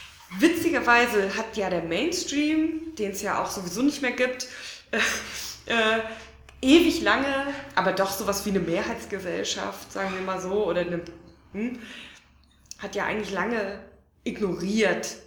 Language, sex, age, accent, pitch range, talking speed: German, female, 20-39, German, 180-235 Hz, 140 wpm